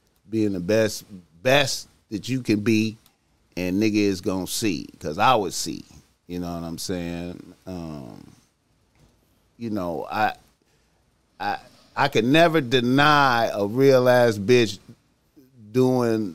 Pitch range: 95-115 Hz